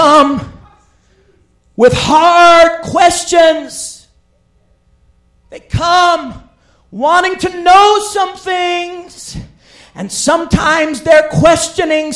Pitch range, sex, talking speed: 325-380 Hz, male, 70 wpm